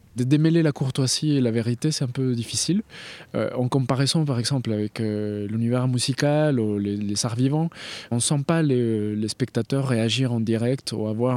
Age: 20-39